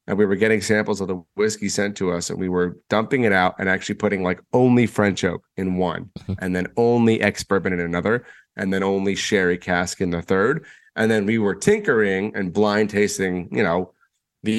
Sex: male